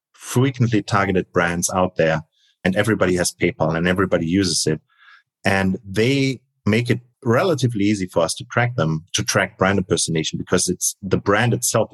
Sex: male